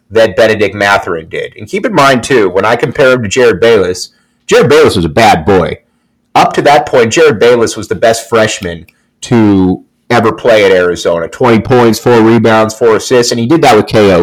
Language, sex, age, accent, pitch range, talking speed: English, male, 30-49, American, 110-135 Hz, 205 wpm